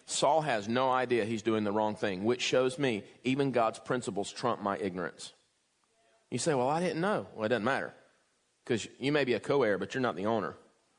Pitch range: 115-140 Hz